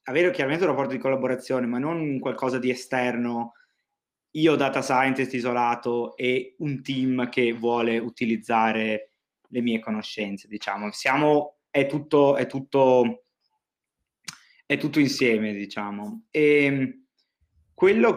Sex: male